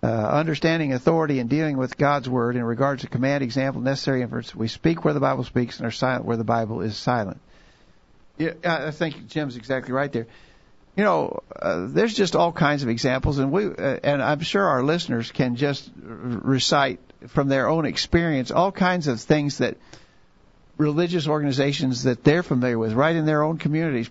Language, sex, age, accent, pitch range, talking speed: English, male, 50-69, American, 120-150 Hz, 190 wpm